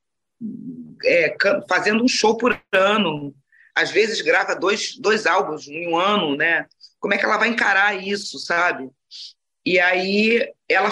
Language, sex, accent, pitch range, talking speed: Portuguese, female, Brazilian, 165-225 Hz, 150 wpm